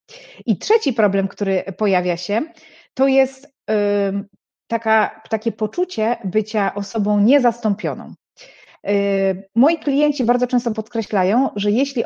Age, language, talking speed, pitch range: 30-49, Polish, 100 wpm, 195-240 Hz